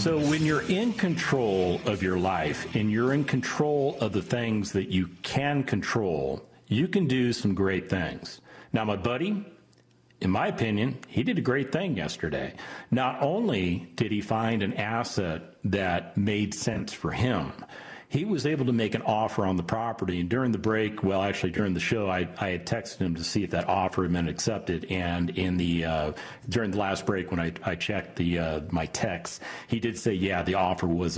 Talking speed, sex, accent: 200 wpm, male, American